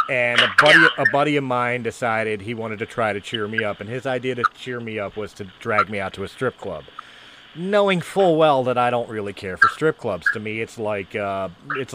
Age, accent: 30-49, American